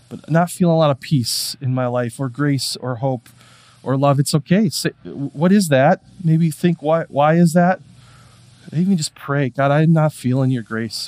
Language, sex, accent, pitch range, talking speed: English, male, American, 115-145 Hz, 200 wpm